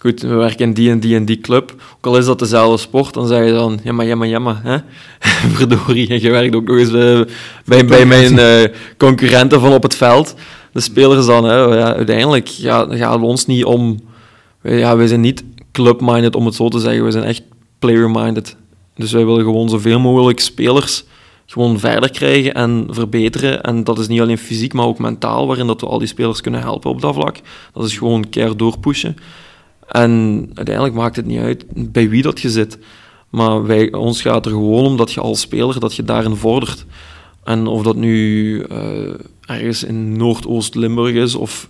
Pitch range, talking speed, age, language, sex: 110-120 Hz, 195 wpm, 20-39, Dutch, male